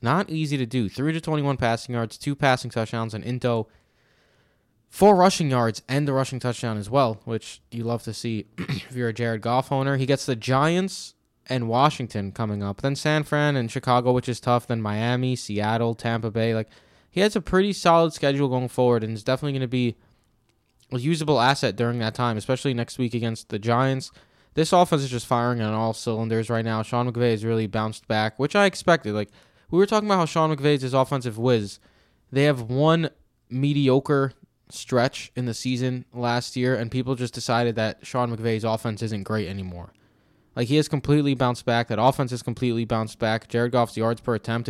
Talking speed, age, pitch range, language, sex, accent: 200 wpm, 20-39, 115-135 Hz, English, male, American